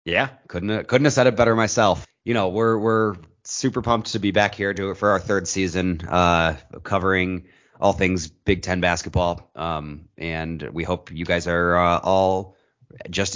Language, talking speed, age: English, 190 wpm, 30-49